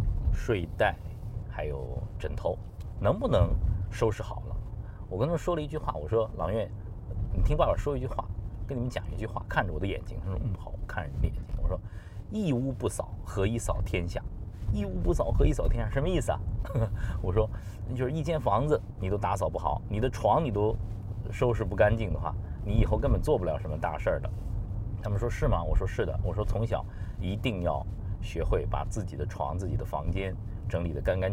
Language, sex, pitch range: Chinese, male, 95-110 Hz